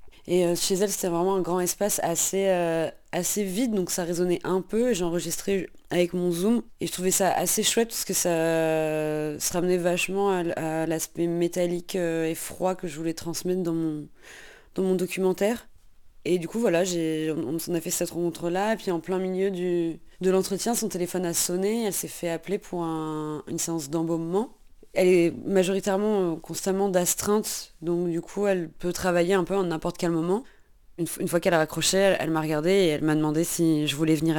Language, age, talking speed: French, 20-39, 200 wpm